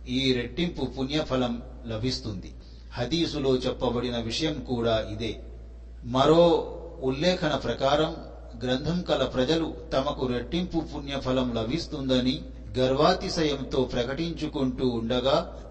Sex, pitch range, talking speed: male, 115-135 Hz, 85 wpm